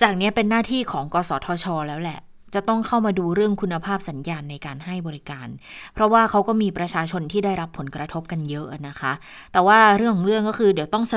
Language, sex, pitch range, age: Thai, female, 165-215 Hz, 20-39